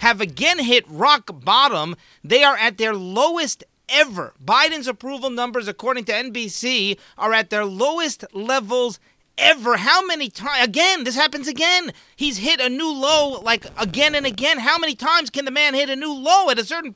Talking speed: 180 wpm